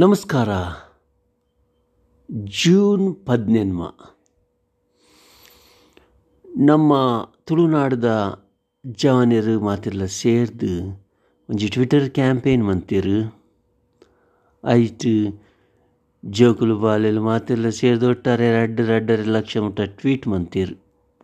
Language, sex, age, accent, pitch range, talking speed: English, male, 60-79, Indian, 105-140 Hz, 75 wpm